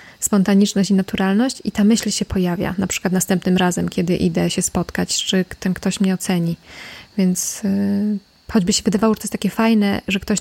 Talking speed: 190 wpm